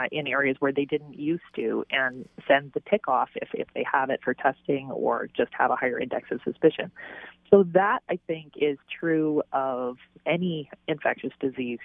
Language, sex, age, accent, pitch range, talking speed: English, female, 30-49, American, 130-155 Hz, 185 wpm